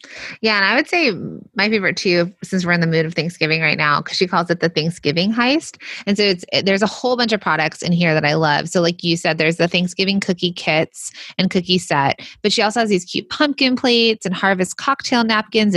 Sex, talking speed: female, 235 wpm